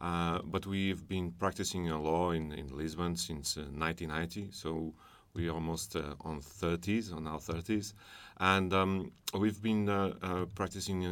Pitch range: 80-95 Hz